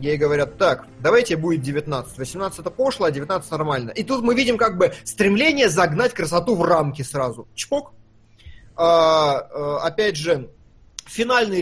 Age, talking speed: 20-39, 145 wpm